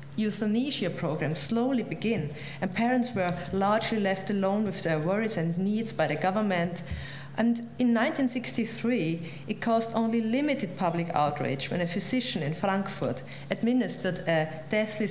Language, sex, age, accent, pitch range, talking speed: English, female, 40-59, German, 165-220 Hz, 140 wpm